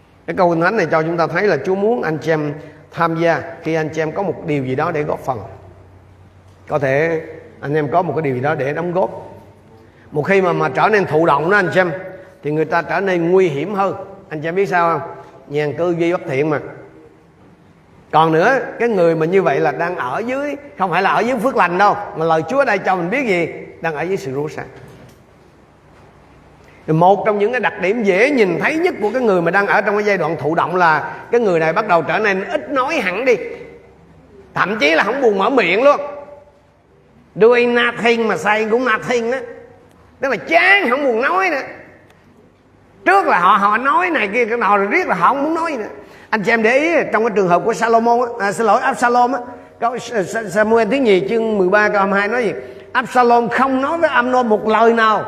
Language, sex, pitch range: Vietnamese, male, 160-235 Hz